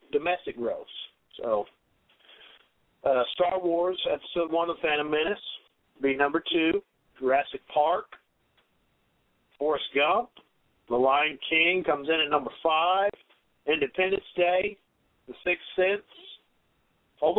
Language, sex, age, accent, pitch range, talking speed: English, male, 50-69, American, 140-180 Hz, 110 wpm